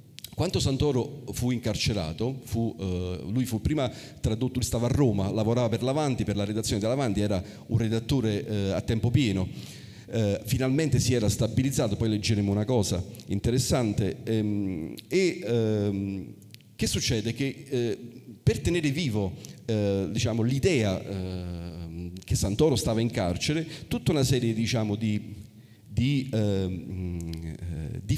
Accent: native